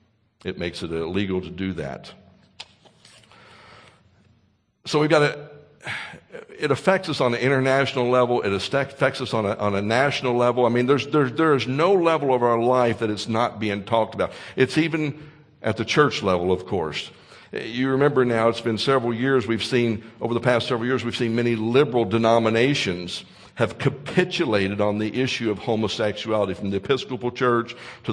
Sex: male